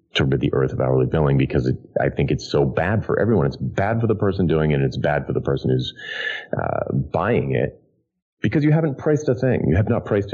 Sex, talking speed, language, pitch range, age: male, 250 wpm, English, 70-95 Hz, 30-49